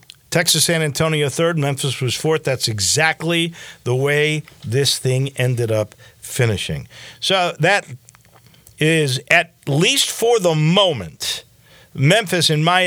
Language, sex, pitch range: English, male, 125-165 Hz